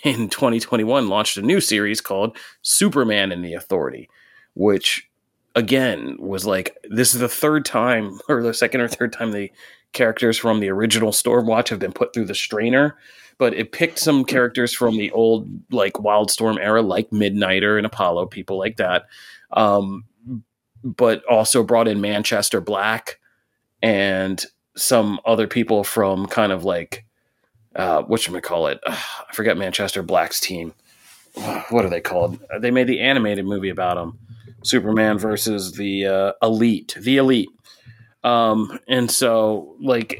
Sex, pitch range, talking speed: male, 100-120 Hz, 160 wpm